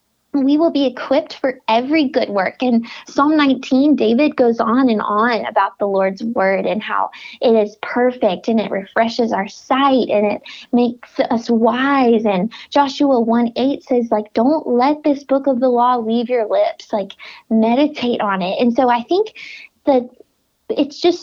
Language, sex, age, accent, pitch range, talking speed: English, female, 20-39, American, 230-290 Hz, 170 wpm